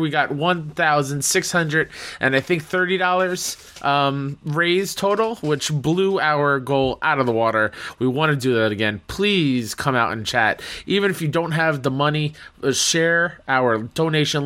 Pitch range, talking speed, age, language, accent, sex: 110-150 Hz, 160 wpm, 20-39, English, American, male